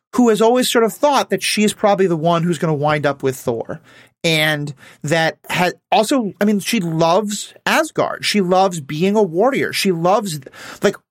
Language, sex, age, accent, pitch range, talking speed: English, male, 30-49, American, 150-215 Hz, 190 wpm